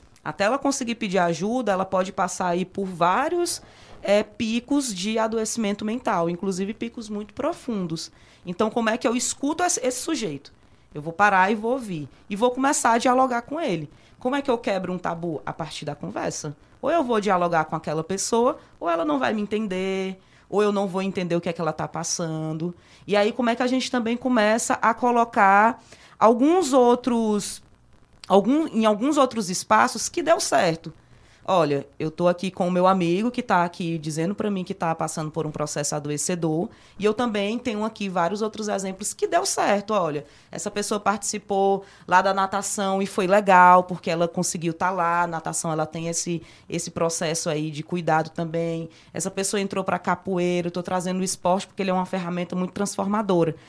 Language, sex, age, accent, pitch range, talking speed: Portuguese, female, 20-39, Brazilian, 170-220 Hz, 190 wpm